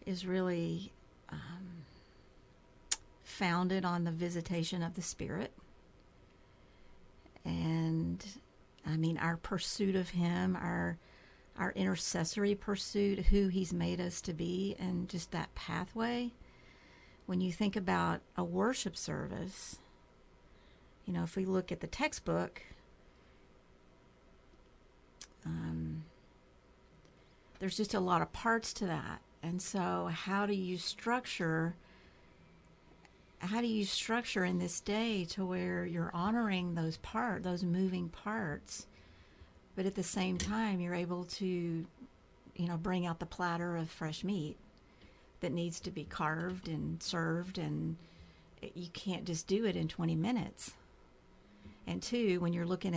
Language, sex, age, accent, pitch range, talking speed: English, female, 50-69, American, 160-190 Hz, 130 wpm